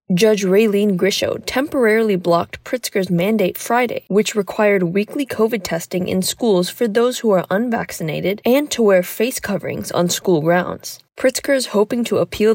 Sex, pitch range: female, 180-230 Hz